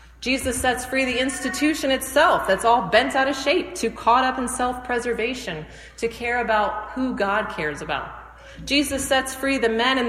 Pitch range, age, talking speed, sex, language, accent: 205-260 Hz, 30-49, 180 wpm, female, English, American